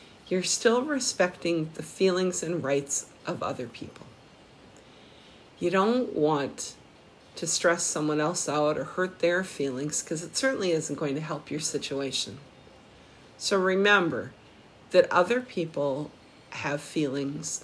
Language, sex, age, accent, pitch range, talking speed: English, female, 50-69, American, 150-200 Hz, 130 wpm